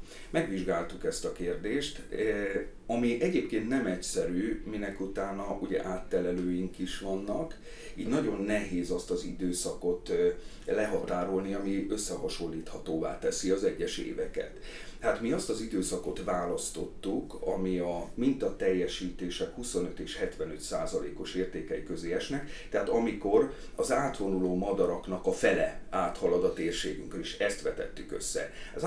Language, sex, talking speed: Hungarian, male, 120 wpm